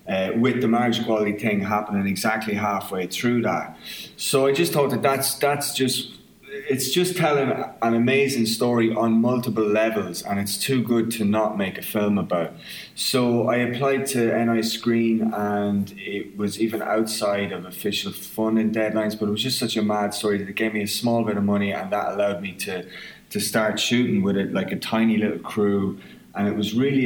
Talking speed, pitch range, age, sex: 195 wpm, 95-115 Hz, 20-39, male